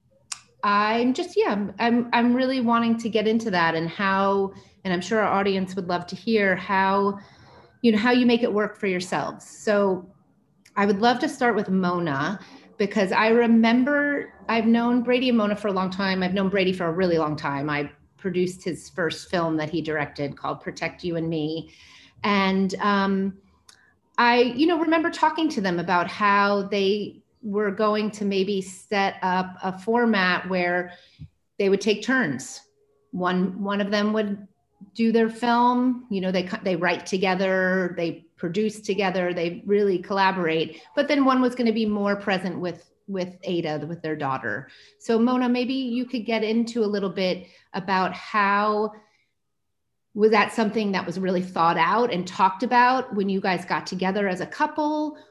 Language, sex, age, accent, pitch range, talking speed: English, female, 30-49, American, 180-225 Hz, 175 wpm